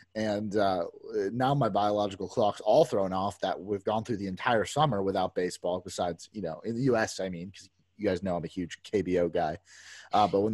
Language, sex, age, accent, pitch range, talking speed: English, male, 30-49, American, 95-130 Hz, 215 wpm